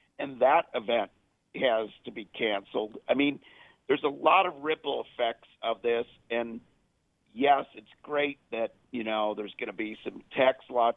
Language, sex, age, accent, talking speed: English, male, 50-69, American, 170 wpm